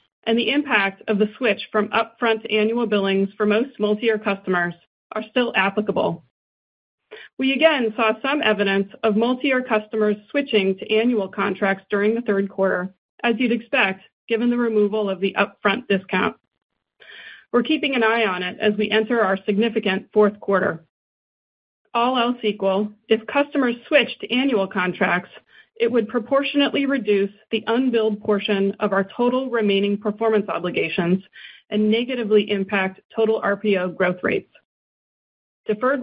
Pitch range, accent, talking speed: 195-235 Hz, American, 145 wpm